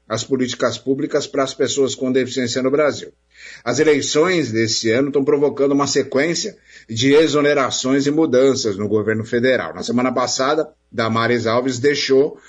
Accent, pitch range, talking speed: Brazilian, 115-145 Hz, 150 wpm